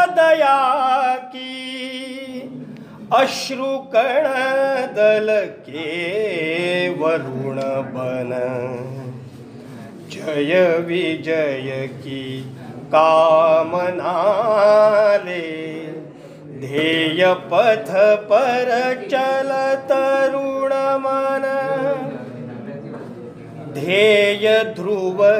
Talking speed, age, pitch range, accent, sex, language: 45 wpm, 40-59, 160-270 Hz, native, male, Hindi